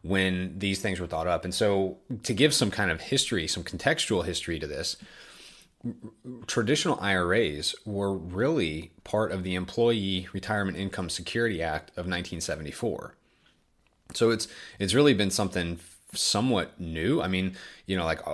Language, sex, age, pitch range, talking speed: English, male, 30-49, 90-110 Hz, 155 wpm